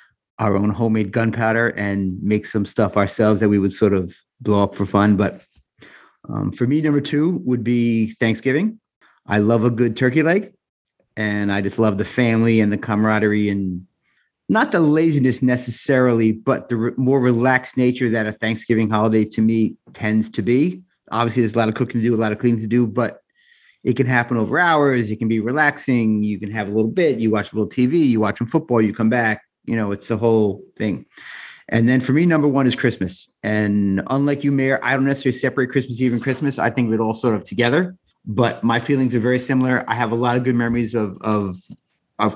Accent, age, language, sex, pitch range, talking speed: American, 30-49, English, male, 110-130 Hz, 215 wpm